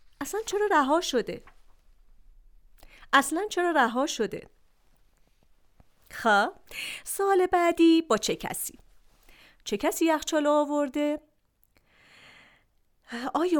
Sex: female